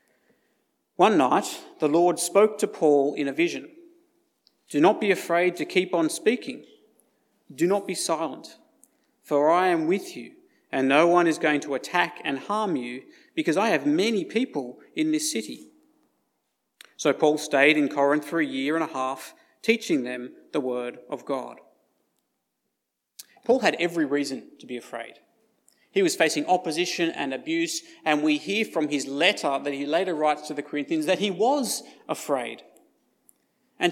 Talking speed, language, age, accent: 165 wpm, English, 40-59, Australian